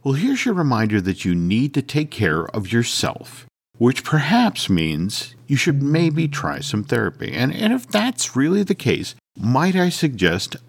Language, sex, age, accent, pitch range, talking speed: English, male, 50-69, American, 105-170 Hz, 175 wpm